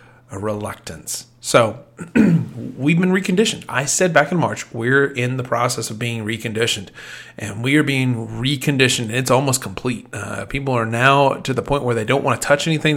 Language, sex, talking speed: English, male, 185 wpm